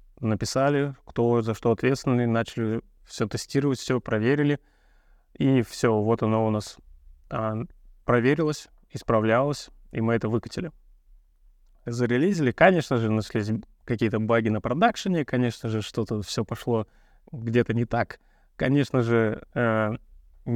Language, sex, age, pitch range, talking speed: Russian, male, 20-39, 110-130 Hz, 120 wpm